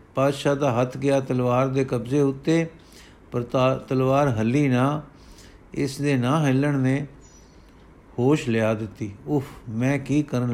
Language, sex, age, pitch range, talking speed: Punjabi, male, 50-69, 120-145 Hz, 135 wpm